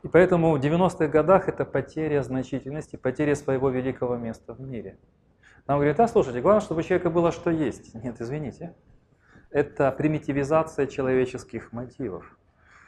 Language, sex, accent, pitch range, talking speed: Russian, male, native, 115-150 Hz, 145 wpm